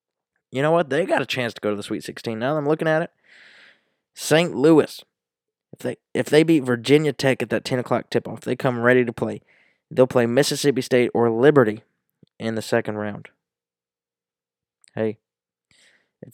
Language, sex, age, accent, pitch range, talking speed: English, male, 20-39, American, 120-145 Hz, 185 wpm